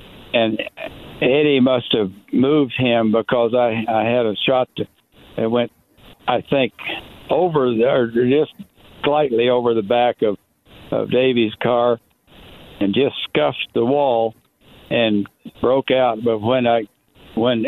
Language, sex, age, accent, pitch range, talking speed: English, male, 60-79, American, 110-125 Hz, 135 wpm